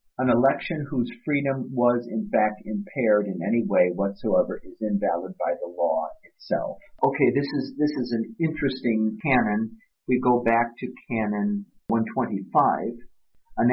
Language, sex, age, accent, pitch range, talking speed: English, male, 50-69, American, 100-130 Hz, 145 wpm